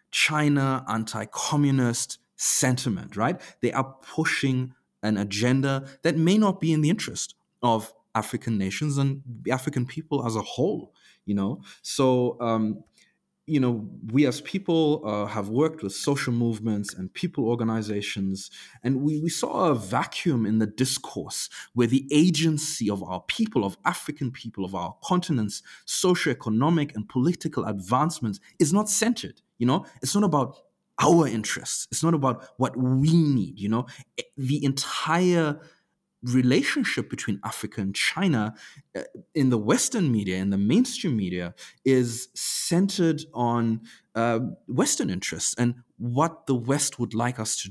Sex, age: male, 30-49